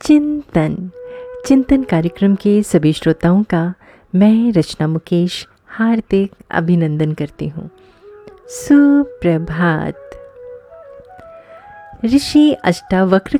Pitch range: 160-265 Hz